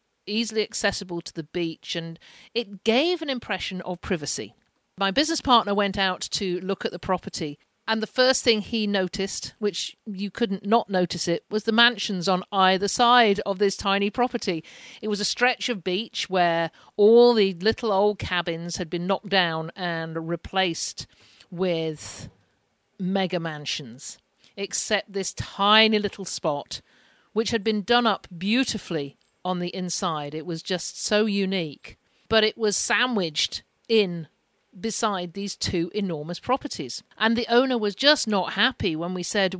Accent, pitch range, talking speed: British, 175-220 Hz, 160 wpm